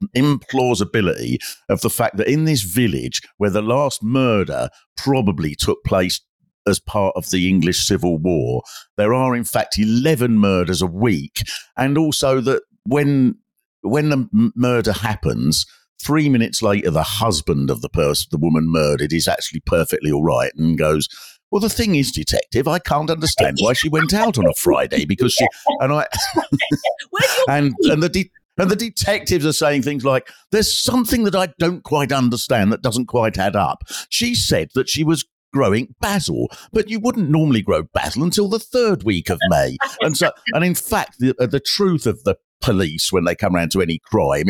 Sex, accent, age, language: male, British, 50-69, English